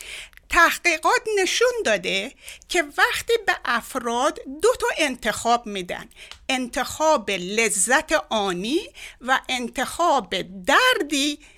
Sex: female